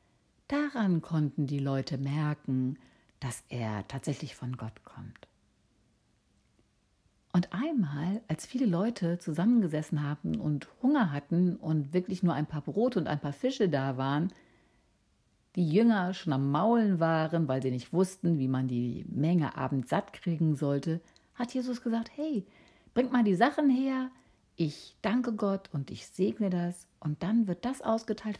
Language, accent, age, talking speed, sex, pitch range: German, German, 60-79, 150 wpm, female, 140-210 Hz